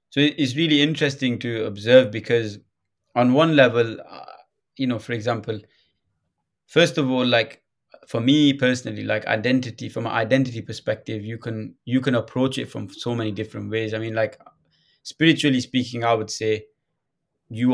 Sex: male